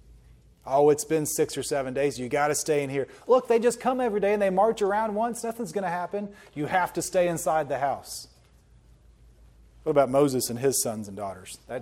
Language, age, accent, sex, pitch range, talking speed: English, 30-49, American, male, 125-195 Hz, 225 wpm